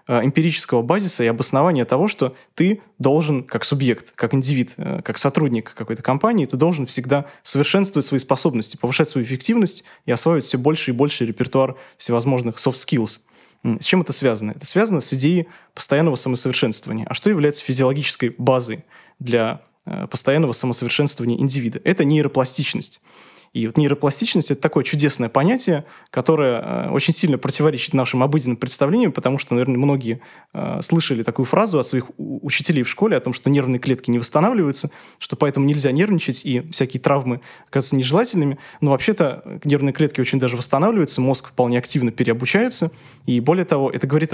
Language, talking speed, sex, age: Russian, 155 wpm, male, 20-39